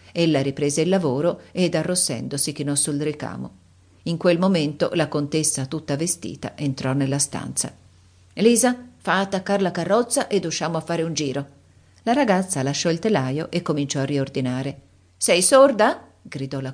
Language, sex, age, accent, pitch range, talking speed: Italian, female, 50-69, native, 140-220 Hz, 155 wpm